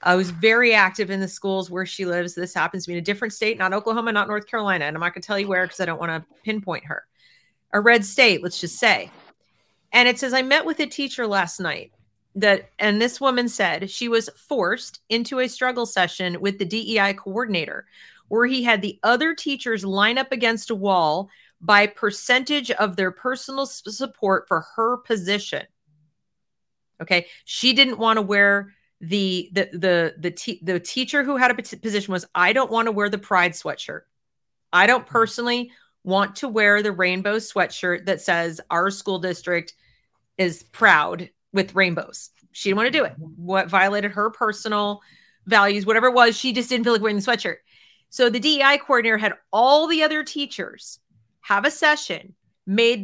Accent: American